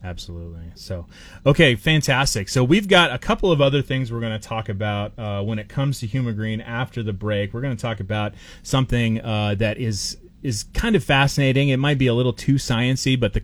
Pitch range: 100-130 Hz